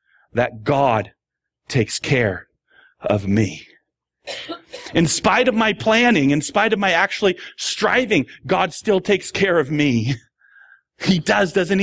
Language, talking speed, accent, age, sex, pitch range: English, 130 wpm, American, 40-59, male, 110-155 Hz